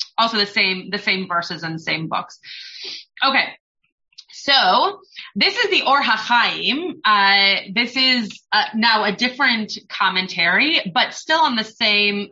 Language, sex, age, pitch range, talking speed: English, female, 30-49, 190-255 Hz, 140 wpm